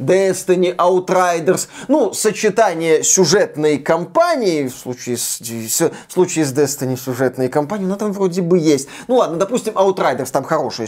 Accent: native